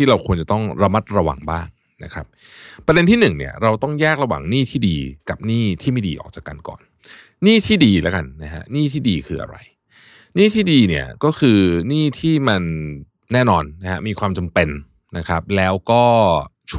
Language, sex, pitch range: Thai, male, 85-130 Hz